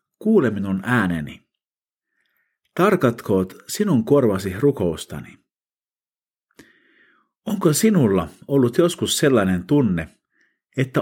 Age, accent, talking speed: 50-69, native, 75 wpm